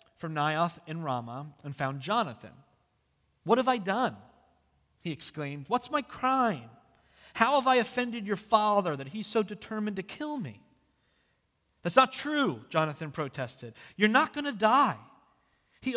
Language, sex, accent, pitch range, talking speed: English, male, American, 130-215 Hz, 150 wpm